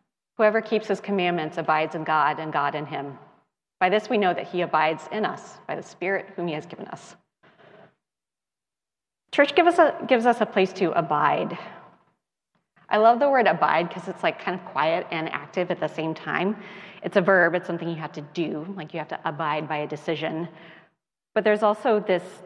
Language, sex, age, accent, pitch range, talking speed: English, female, 30-49, American, 160-195 Hz, 195 wpm